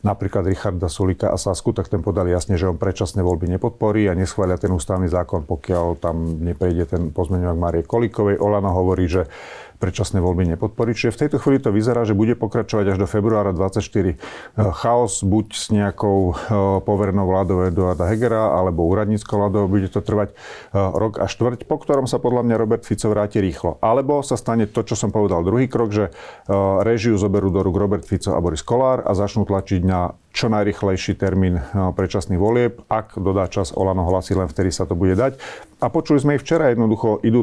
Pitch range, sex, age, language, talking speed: 95-110 Hz, male, 40-59, Slovak, 190 wpm